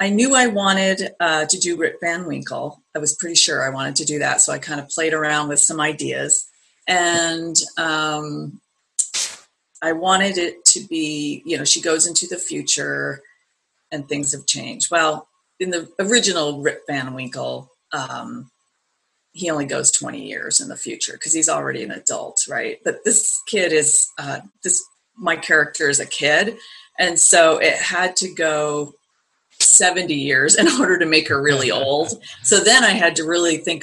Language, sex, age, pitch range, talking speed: English, female, 40-59, 150-180 Hz, 180 wpm